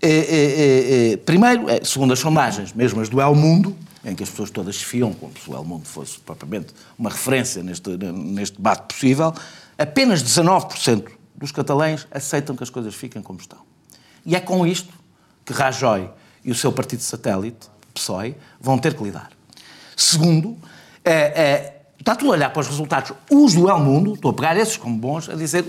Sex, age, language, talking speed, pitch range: male, 50-69, Portuguese, 195 wpm, 120-160 Hz